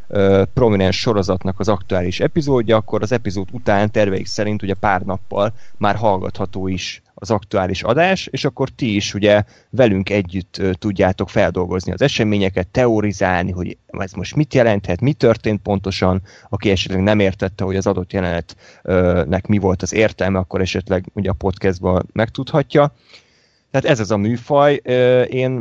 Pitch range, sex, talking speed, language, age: 95-115 Hz, male, 155 wpm, Hungarian, 20-39